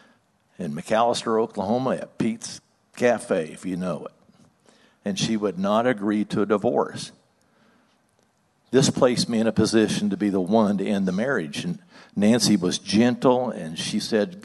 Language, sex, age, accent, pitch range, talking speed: English, male, 60-79, American, 100-130 Hz, 160 wpm